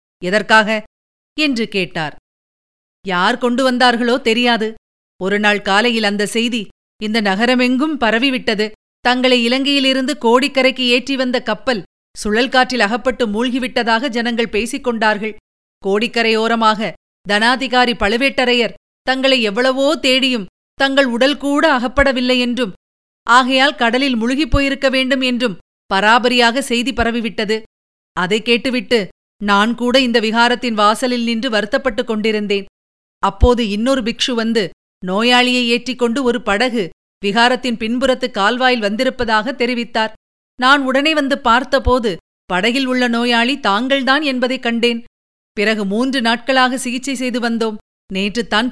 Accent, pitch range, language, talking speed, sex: native, 215-255 Hz, Tamil, 105 wpm, female